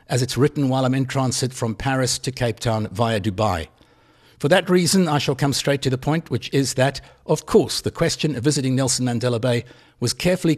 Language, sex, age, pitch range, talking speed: English, male, 60-79, 115-145 Hz, 215 wpm